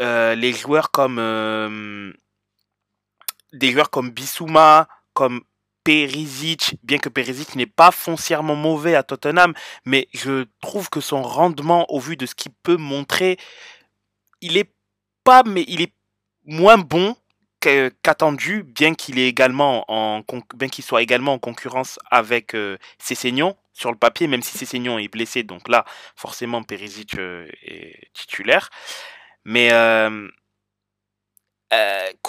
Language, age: French, 20-39